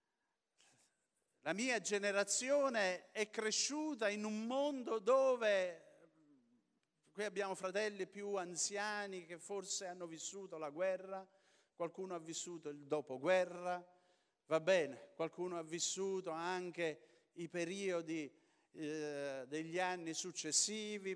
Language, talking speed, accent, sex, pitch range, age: Italian, 105 wpm, native, male, 150-195 Hz, 50-69